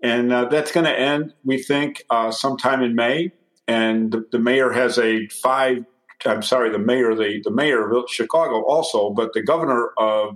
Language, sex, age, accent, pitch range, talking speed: English, male, 50-69, American, 110-130 Hz, 190 wpm